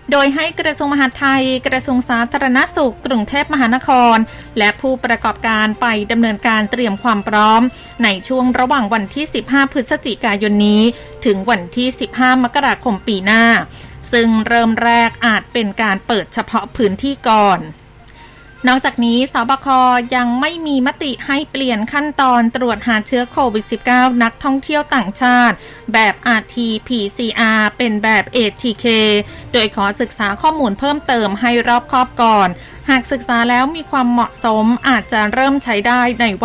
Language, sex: Thai, female